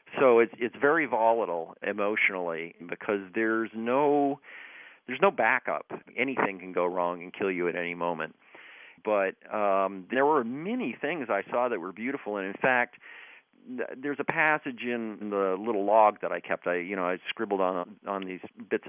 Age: 50-69